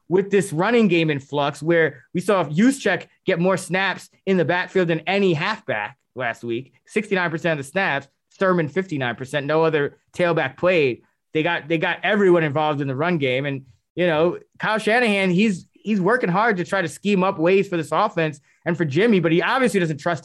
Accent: American